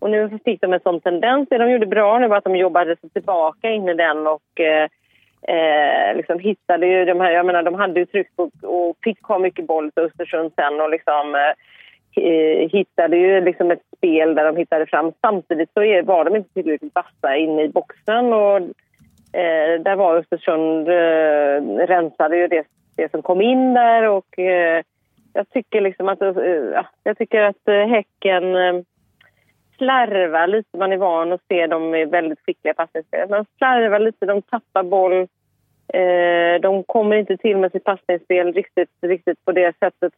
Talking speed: 180 wpm